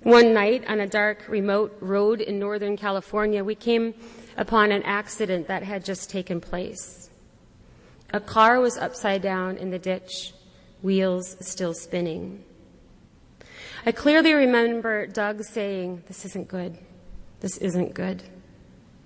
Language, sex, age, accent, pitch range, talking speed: English, female, 30-49, American, 185-220 Hz, 130 wpm